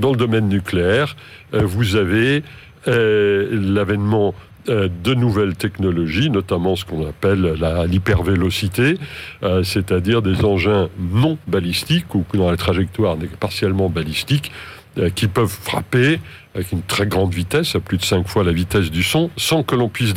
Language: French